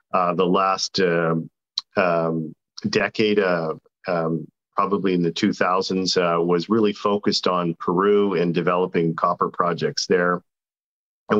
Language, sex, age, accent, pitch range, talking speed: English, male, 40-59, American, 85-95 Hz, 130 wpm